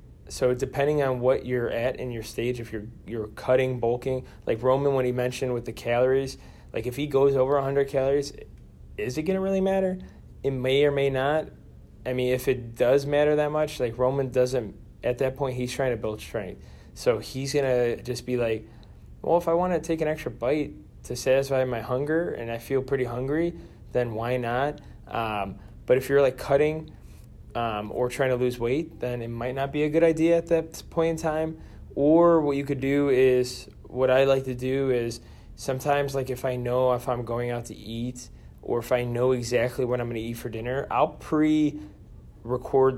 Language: English